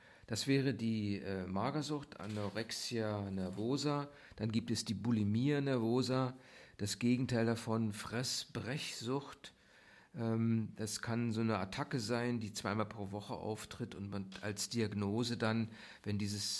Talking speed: 130 wpm